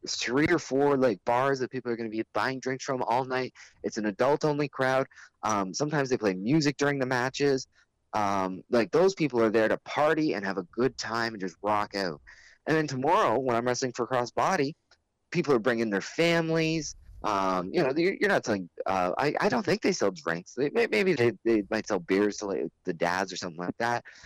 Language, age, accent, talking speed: English, 20-39, American, 220 wpm